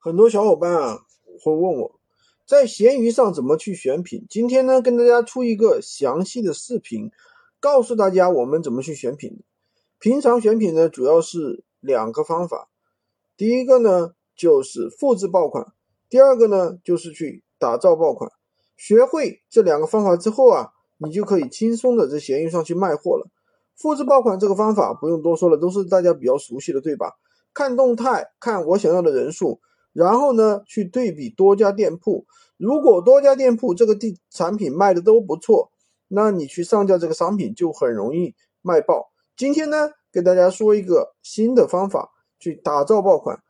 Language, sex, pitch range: Chinese, male, 180-280 Hz